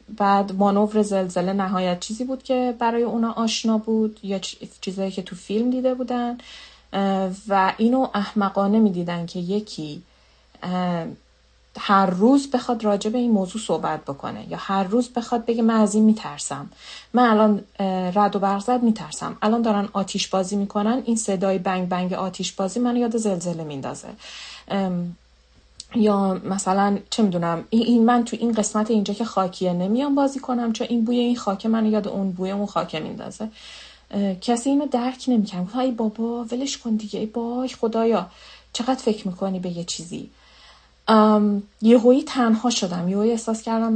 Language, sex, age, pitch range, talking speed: Persian, female, 30-49, 190-230 Hz, 160 wpm